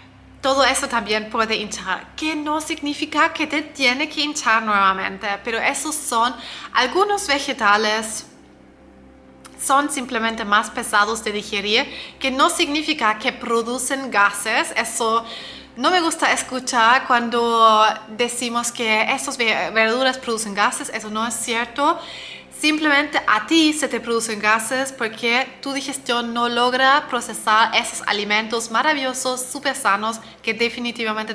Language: Spanish